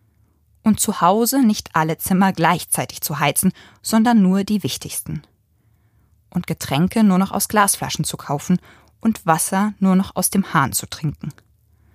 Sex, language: female, German